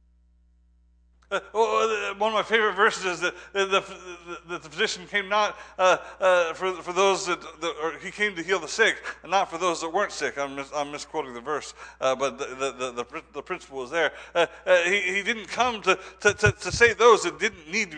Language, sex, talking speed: English, male, 225 wpm